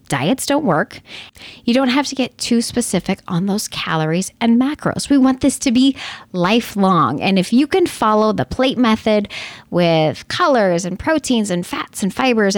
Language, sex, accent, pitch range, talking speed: English, female, American, 180-265 Hz, 175 wpm